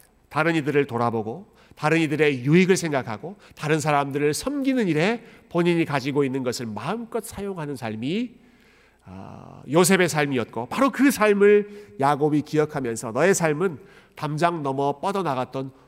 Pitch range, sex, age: 135-195 Hz, male, 40-59